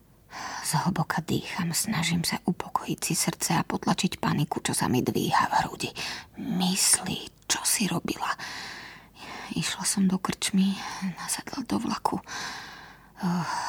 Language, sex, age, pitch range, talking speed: Slovak, female, 20-39, 165-195 Hz, 125 wpm